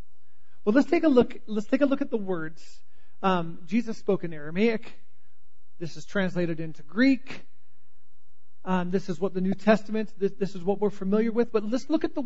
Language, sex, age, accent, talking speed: English, male, 40-59, American, 200 wpm